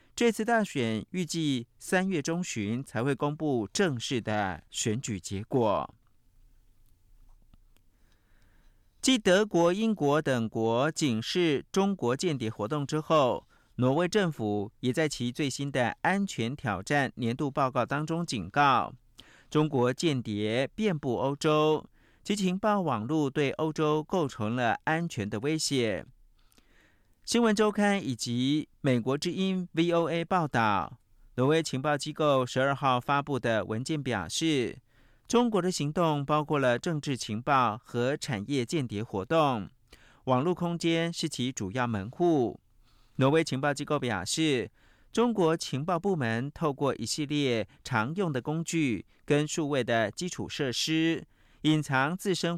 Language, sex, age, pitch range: Chinese, male, 50-69, 120-165 Hz